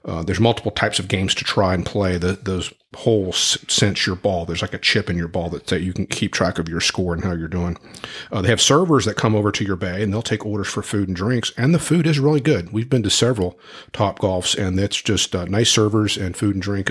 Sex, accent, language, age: male, American, English, 40-59